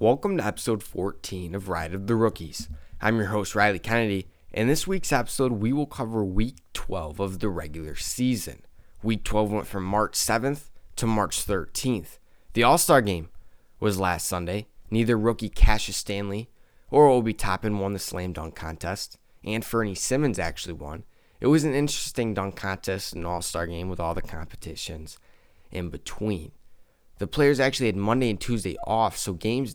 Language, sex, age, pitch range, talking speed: English, male, 20-39, 90-120 Hz, 170 wpm